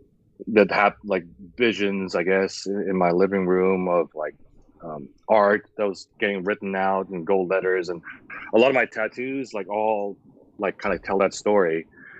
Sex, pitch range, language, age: male, 95-120 Hz, English, 30-49